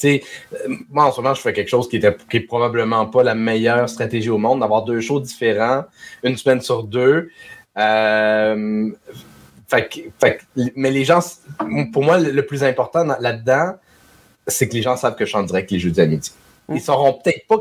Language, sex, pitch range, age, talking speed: French, male, 110-140 Hz, 30-49, 175 wpm